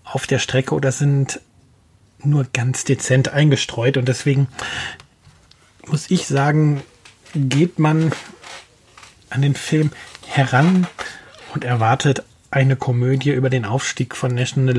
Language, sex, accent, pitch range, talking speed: German, male, German, 120-140 Hz, 120 wpm